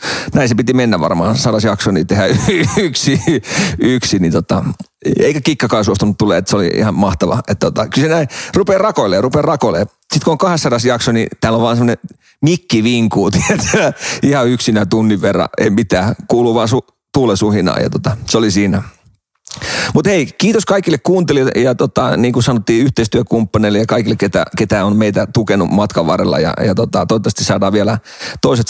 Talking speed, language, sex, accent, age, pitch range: 180 wpm, Finnish, male, native, 40-59, 105-130 Hz